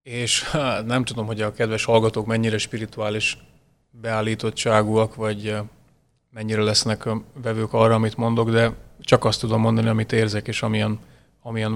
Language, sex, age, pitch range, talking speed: Hungarian, male, 30-49, 110-125 Hz, 140 wpm